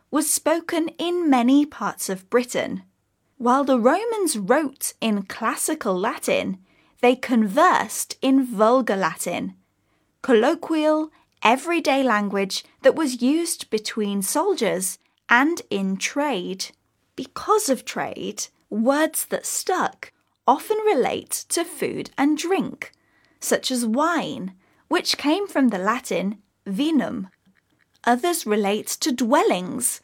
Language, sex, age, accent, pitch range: Chinese, female, 10-29, British, 205-310 Hz